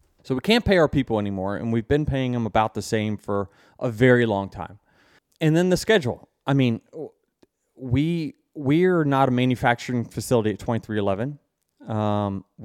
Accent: American